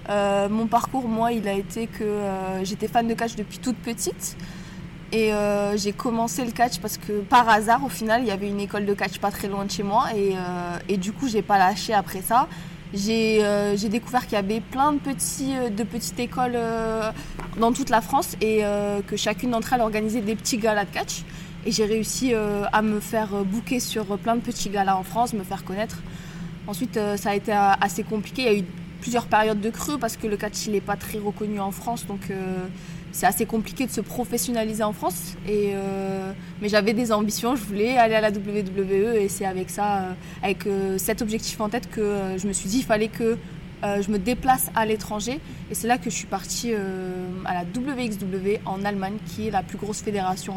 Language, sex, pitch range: French, female, 190-225 Hz